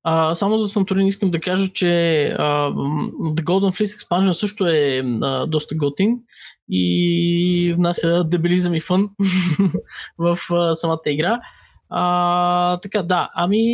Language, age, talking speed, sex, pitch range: Bulgarian, 20-39, 135 wpm, male, 160-205 Hz